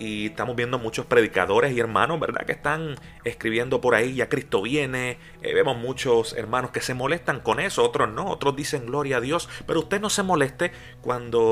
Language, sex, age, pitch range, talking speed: Spanish, male, 30-49, 120-155 Hz, 200 wpm